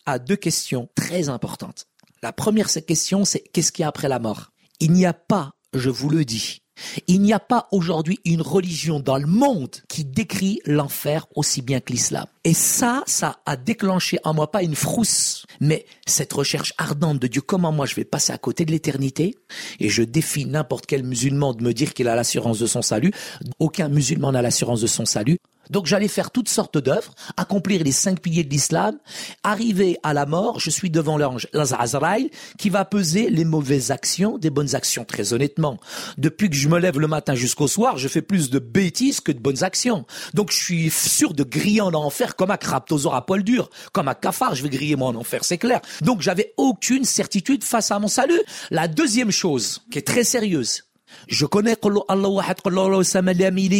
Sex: male